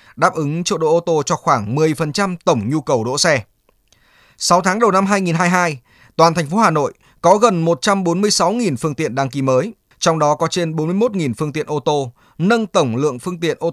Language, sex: Vietnamese, male